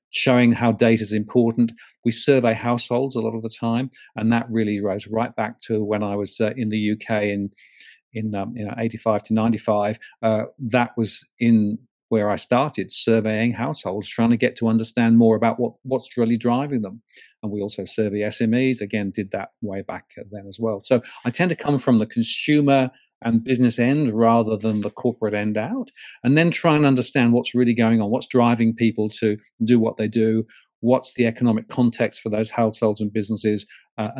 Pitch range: 110-120 Hz